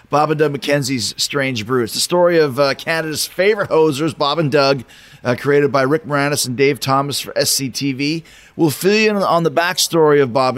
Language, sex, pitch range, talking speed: English, male, 140-175 Hz, 205 wpm